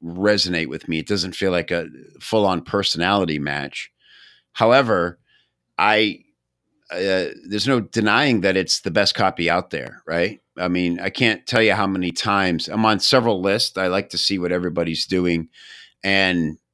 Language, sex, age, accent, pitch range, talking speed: English, male, 50-69, American, 85-100 Hz, 165 wpm